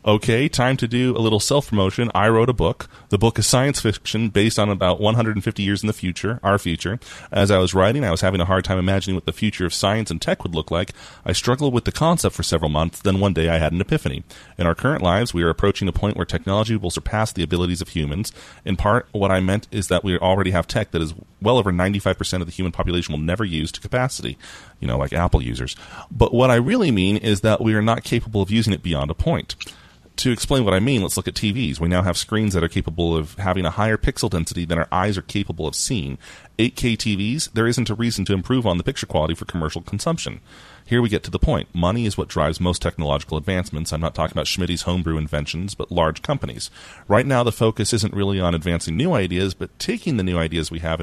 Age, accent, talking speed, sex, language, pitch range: 30-49, American, 245 wpm, male, English, 85-115 Hz